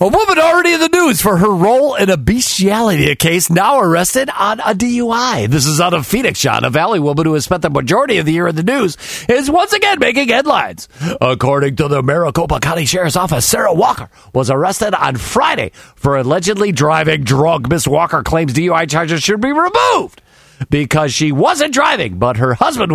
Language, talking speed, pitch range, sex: English, 195 wpm, 155-230 Hz, male